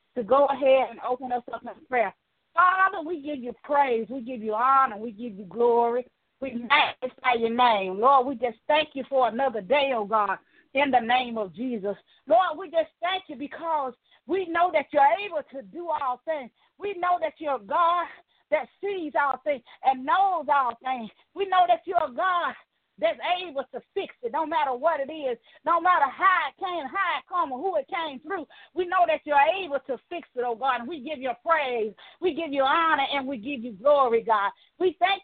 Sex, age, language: female, 40-59, English